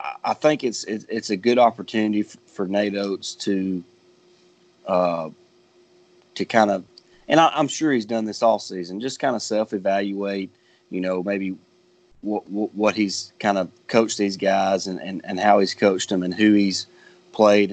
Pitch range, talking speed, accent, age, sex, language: 95-120 Hz, 170 wpm, American, 30-49, male, English